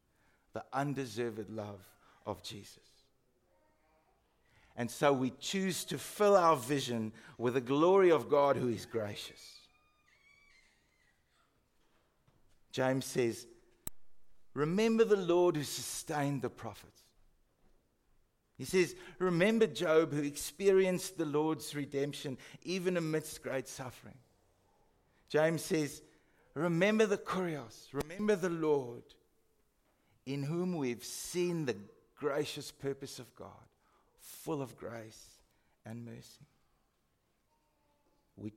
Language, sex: English, male